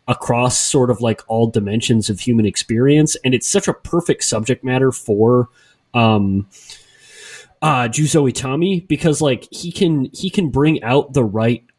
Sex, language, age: male, English, 30-49